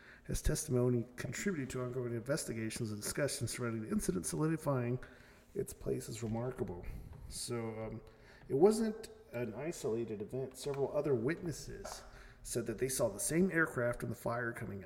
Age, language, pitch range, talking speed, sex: 40-59, English, 115-135 Hz, 150 wpm, male